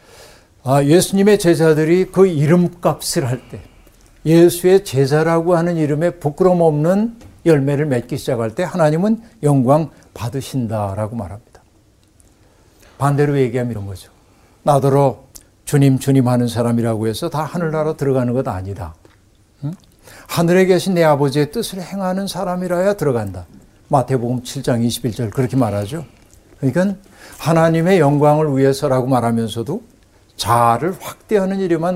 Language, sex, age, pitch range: Korean, male, 60-79, 115-165 Hz